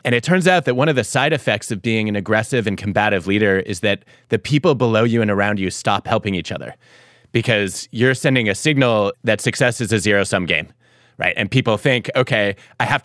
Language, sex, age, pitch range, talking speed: English, male, 30-49, 105-125 Hz, 220 wpm